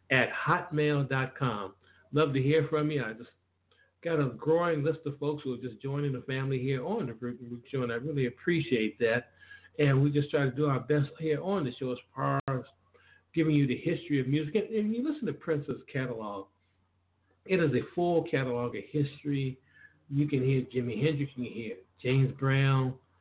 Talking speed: 195 wpm